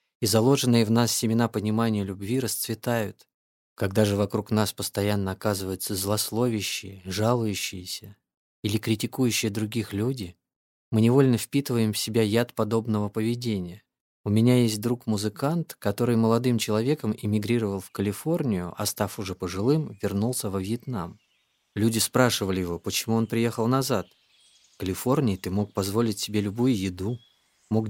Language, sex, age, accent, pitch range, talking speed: Russian, male, 20-39, native, 100-120 Hz, 130 wpm